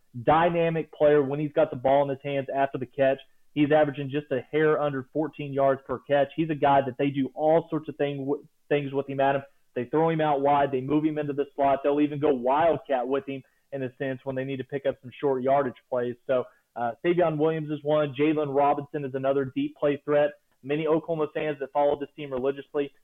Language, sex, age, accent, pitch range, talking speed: English, male, 30-49, American, 135-155 Hz, 230 wpm